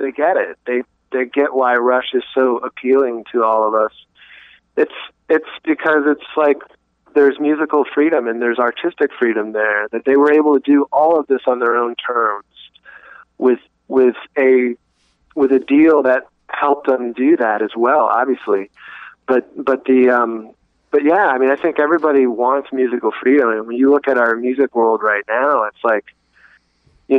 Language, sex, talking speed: English, male, 185 wpm